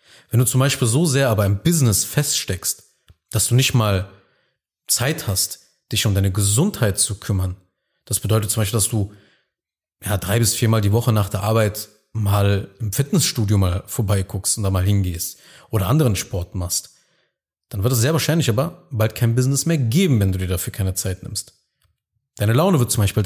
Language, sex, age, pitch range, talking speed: German, male, 30-49, 100-130 Hz, 185 wpm